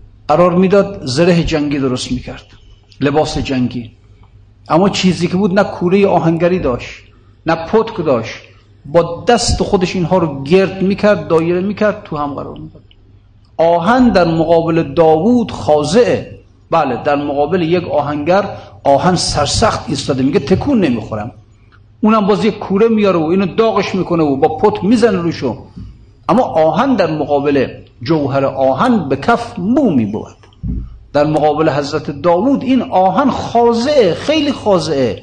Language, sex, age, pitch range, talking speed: Persian, male, 50-69, 120-195 Hz, 135 wpm